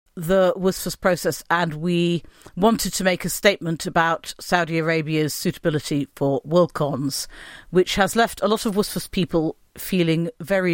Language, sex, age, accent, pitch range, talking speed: English, female, 40-59, British, 155-195 Hz, 145 wpm